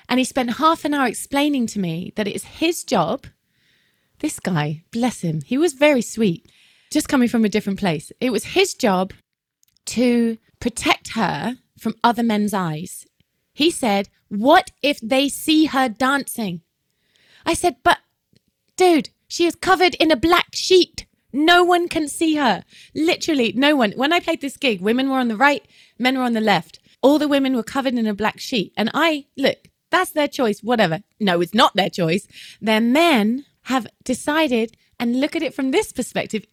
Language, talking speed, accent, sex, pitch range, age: English, 185 wpm, British, female, 215-290 Hz, 20-39